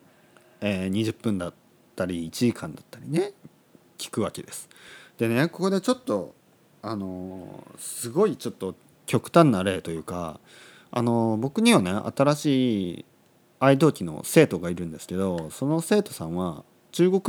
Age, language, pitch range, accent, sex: 40-59, Japanese, 95-140 Hz, native, male